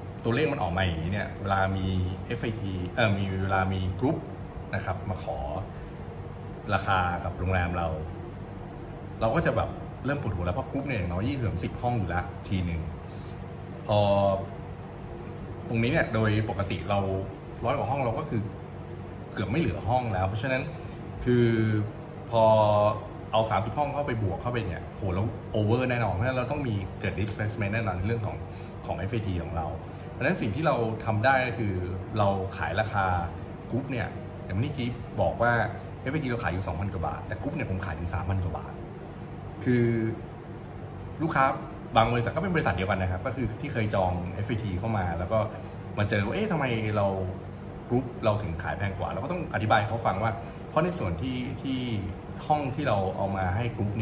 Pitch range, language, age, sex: 95-115 Hz, Thai, 20-39, male